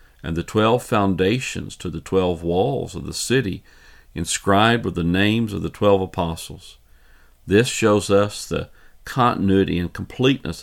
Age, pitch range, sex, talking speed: 50-69, 85-110 Hz, male, 145 wpm